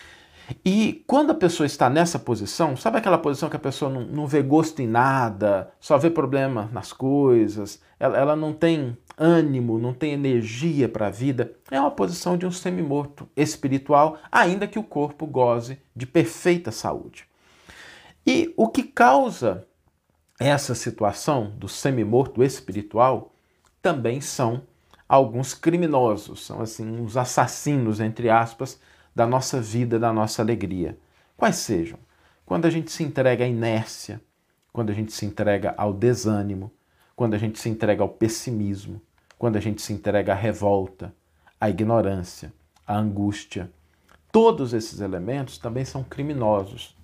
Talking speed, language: 145 wpm, Portuguese